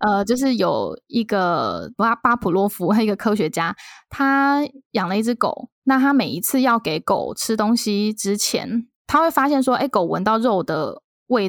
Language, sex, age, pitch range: Chinese, female, 10-29, 190-255 Hz